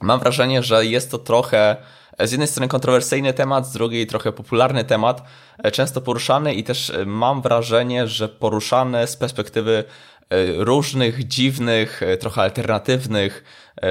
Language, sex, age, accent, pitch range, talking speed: Polish, male, 20-39, native, 105-125 Hz, 130 wpm